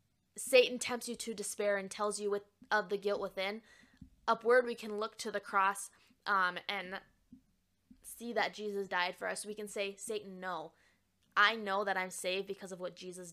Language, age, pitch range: English, 20-39, 190-235 Hz